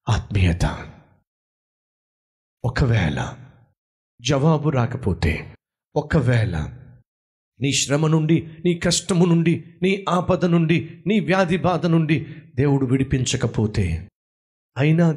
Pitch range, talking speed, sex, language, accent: 135-180 Hz, 65 wpm, male, Telugu, native